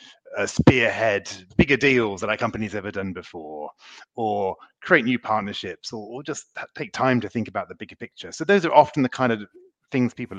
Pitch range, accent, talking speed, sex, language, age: 105-130 Hz, British, 195 wpm, male, English, 30-49